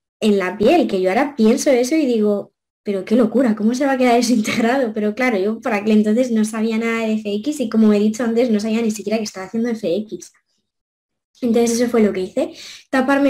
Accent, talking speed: Spanish, 225 wpm